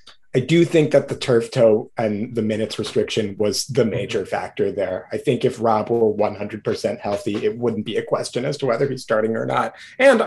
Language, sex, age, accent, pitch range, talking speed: English, male, 30-49, American, 110-145 Hz, 210 wpm